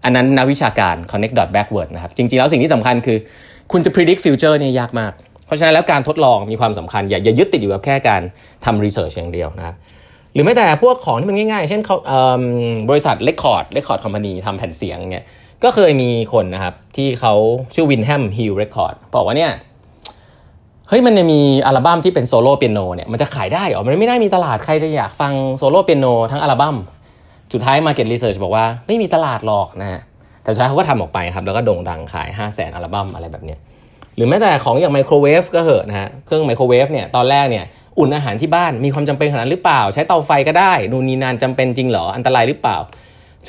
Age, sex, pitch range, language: 20-39, male, 100-145 Hz, Thai